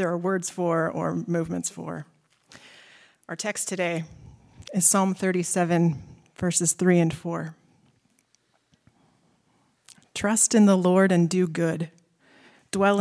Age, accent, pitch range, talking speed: 30-49, American, 165-185 Hz, 110 wpm